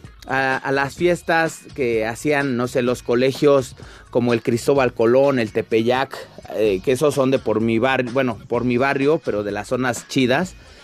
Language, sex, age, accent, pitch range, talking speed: Spanish, male, 30-49, Mexican, 130-195 Hz, 185 wpm